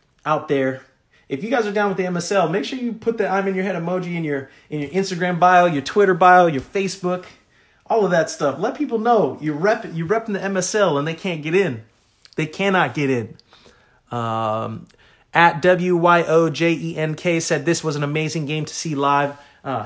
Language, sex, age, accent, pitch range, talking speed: English, male, 30-49, American, 130-170 Hz, 220 wpm